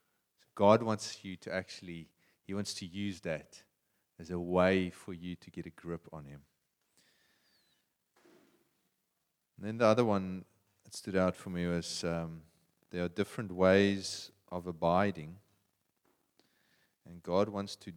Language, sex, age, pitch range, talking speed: English, male, 30-49, 85-100 Hz, 145 wpm